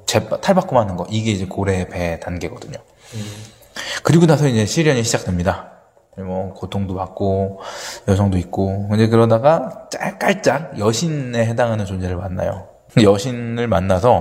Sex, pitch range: male, 95-145 Hz